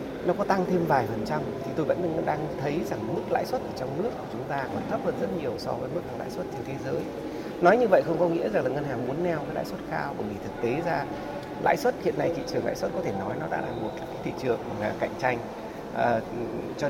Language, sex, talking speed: Vietnamese, male, 275 wpm